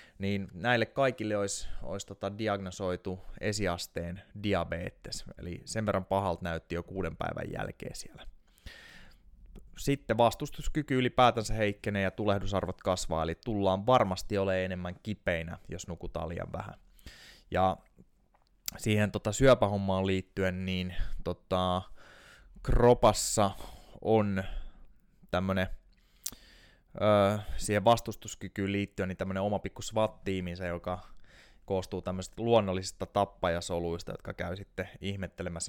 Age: 20-39